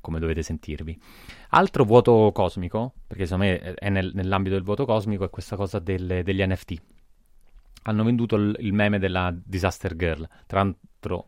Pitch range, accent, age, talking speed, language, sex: 85-100 Hz, native, 30-49, 155 wpm, Italian, male